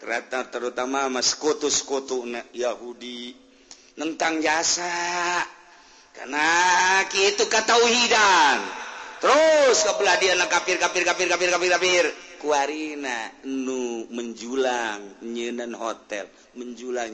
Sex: male